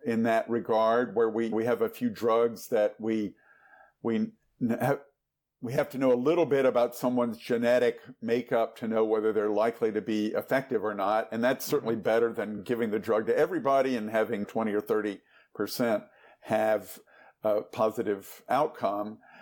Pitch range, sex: 115-130 Hz, male